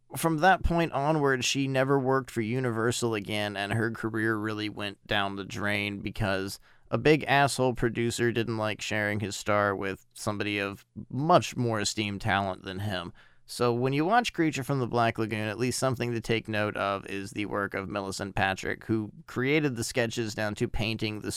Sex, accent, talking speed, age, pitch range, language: male, American, 190 wpm, 30-49, 105-135 Hz, English